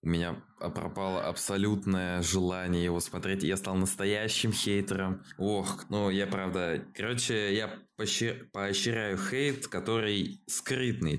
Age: 20-39